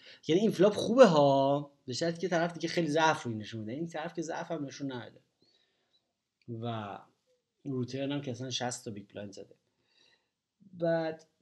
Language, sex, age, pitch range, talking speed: Persian, male, 30-49, 120-155 Hz, 160 wpm